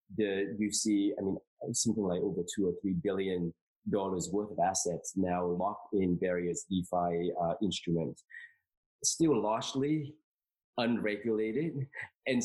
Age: 20-39